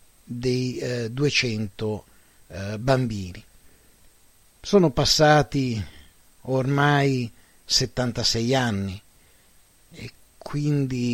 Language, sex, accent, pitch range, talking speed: Italian, male, native, 110-150 Hz, 65 wpm